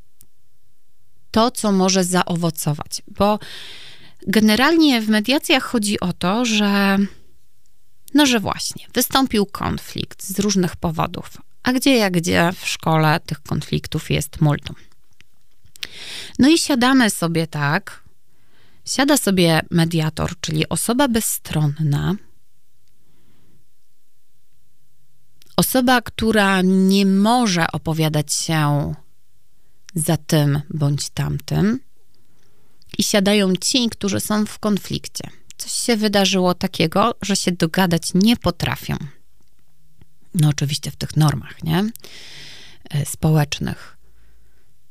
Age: 30-49